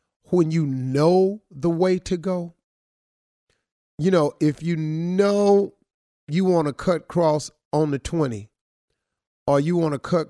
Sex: male